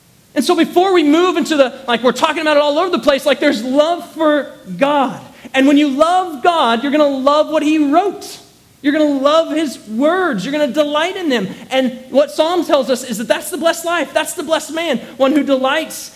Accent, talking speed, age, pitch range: American, 225 wpm, 30-49, 175-275 Hz